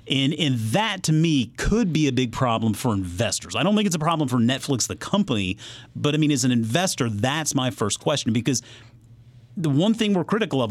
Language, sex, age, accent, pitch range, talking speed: English, male, 40-59, American, 105-140 Hz, 215 wpm